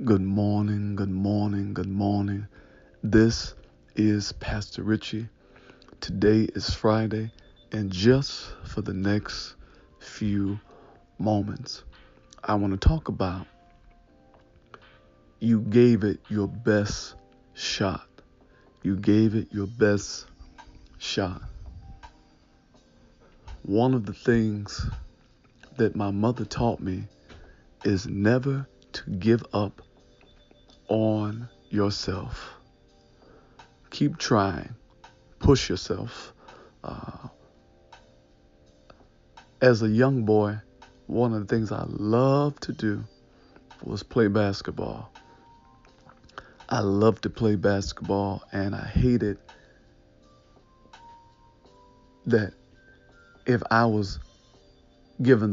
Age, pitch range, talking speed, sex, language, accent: 50-69, 95-115 Hz, 95 wpm, male, English, American